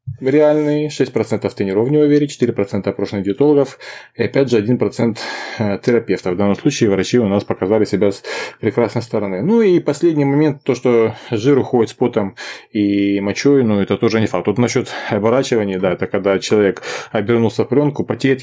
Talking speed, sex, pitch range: 170 wpm, male, 105-130 Hz